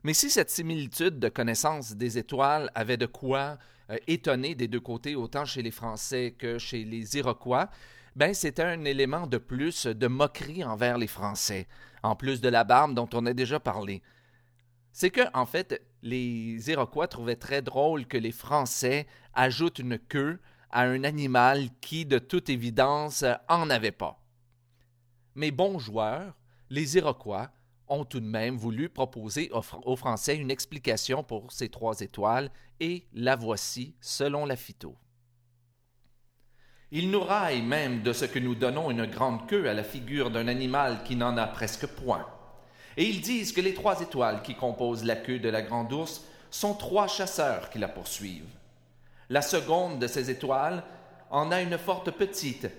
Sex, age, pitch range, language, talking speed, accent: male, 40-59, 120-150 Hz, French, 170 wpm, Canadian